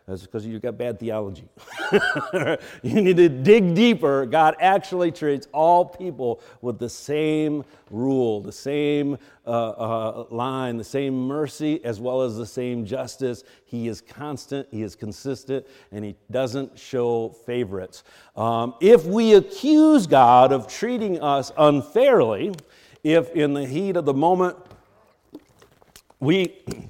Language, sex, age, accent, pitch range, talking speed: English, male, 50-69, American, 125-175 Hz, 140 wpm